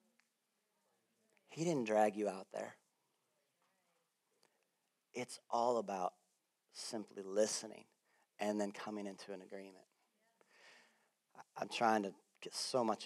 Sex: male